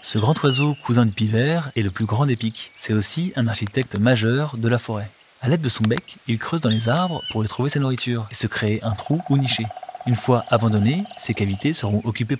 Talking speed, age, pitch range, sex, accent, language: 235 wpm, 20-39, 110-140 Hz, male, French, French